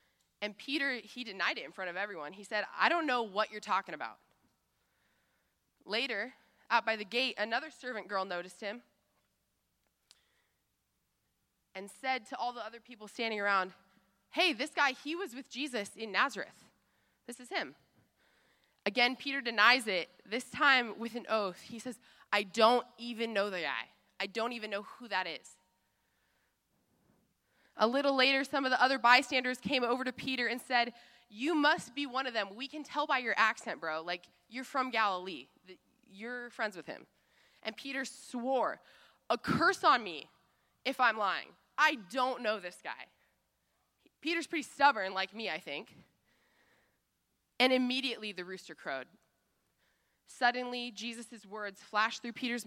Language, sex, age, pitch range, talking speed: English, female, 20-39, 205-255 Hz, 160 wpm